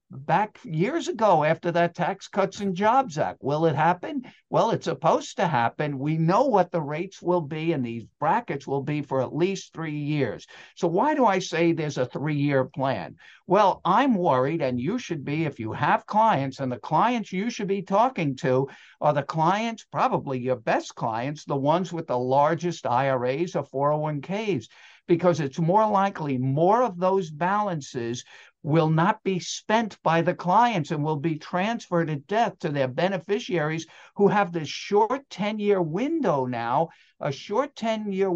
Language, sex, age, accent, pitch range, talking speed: English, male, 60-79, American, 145-205 Hz, 175 wpm